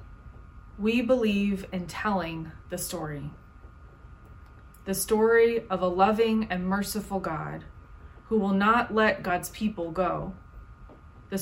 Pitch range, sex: 155-210 Hz, female